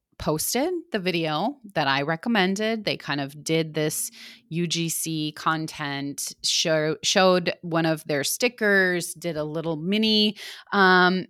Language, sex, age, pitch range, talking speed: English, female, 30-49, 155-200 Hz, 120 wpm